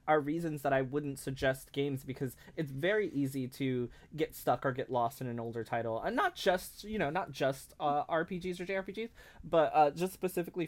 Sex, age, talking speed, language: male, 20-39, 200 wpm, English